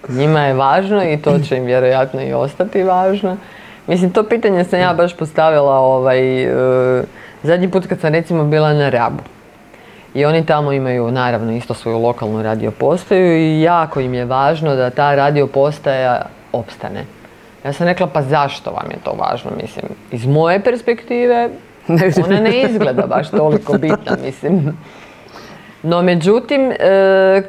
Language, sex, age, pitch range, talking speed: Croatian, female, 30-49, 135-180 Hz, 150 wpm